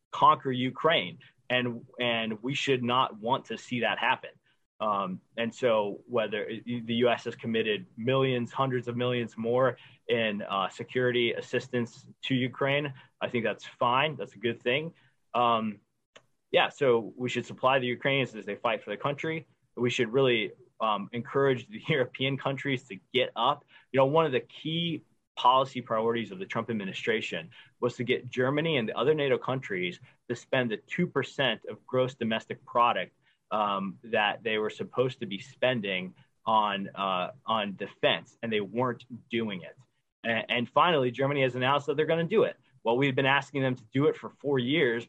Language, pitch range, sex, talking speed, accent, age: English, 115-135 Hz, male, 180 wpm, American, 20-39